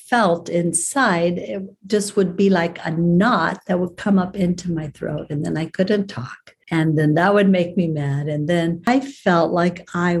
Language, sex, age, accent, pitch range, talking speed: English, female, 50-69, American, 160-180 Hz, 200 wpm